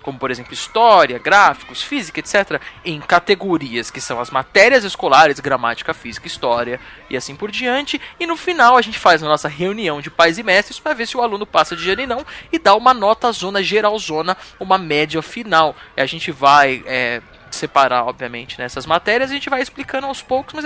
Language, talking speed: Portuguese, 205 wpm